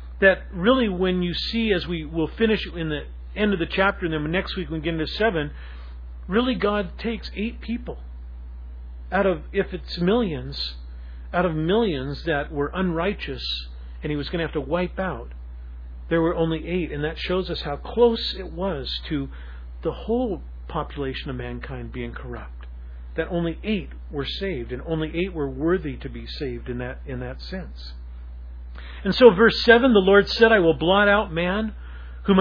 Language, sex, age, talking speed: English, male, 40-59, 185 wpm